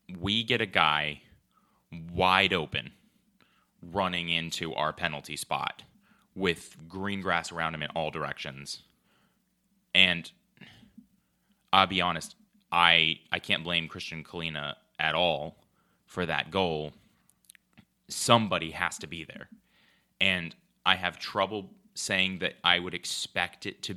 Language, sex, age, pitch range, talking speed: English, male, 30-49, 85-105 Hz, 125 wpm